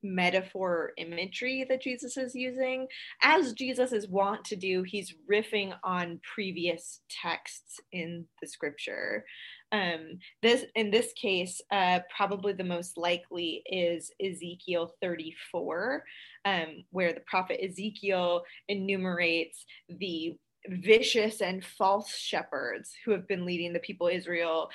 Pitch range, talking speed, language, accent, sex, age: 170-205 Hz, 130 wpm, English, American, female, 20-39